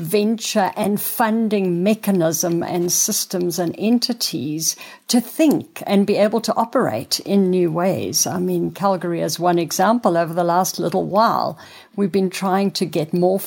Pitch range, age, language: 175-225 Hz, 60-79, English